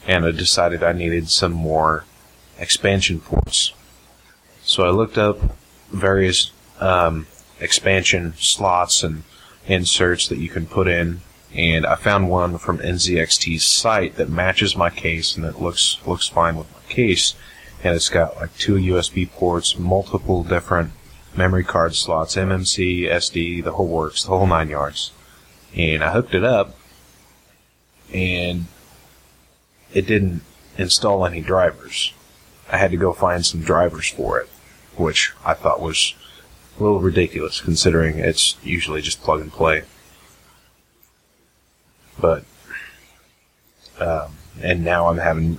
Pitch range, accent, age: 80-90 Hz, American, 30-49